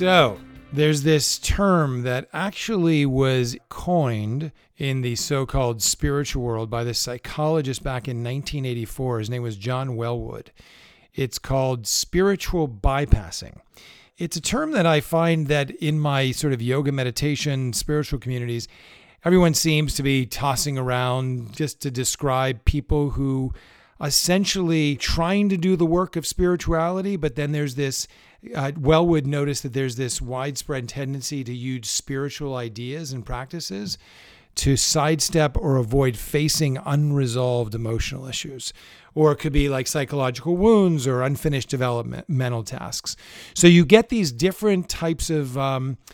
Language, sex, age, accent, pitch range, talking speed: English, male, 40-59, American, 130-160 Hz, 140 wpm